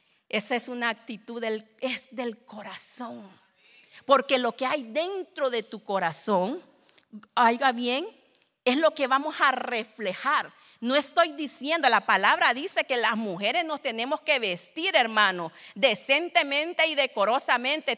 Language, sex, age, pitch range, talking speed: Spanish, female, 40-59, 225-275 Hz, 135 wpm